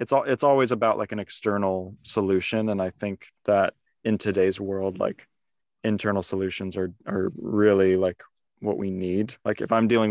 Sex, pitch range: male, 95-110 Hz